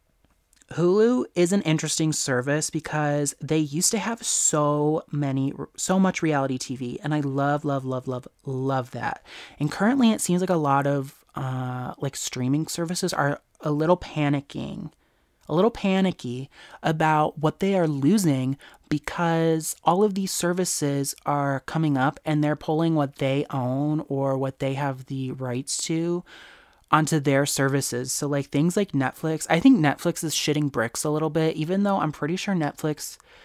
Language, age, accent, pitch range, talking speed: English, 30-49, American, 135-160 Hz, 165 wpm